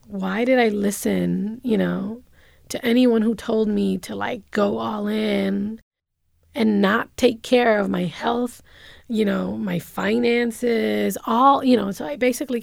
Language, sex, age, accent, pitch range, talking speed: English, female, 20-39, American, 200-245 Hz, 155 wpm